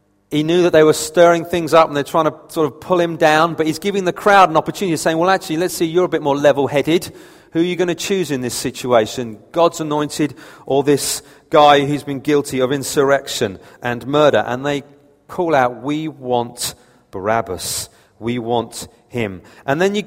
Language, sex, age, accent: English, male, 40-59, British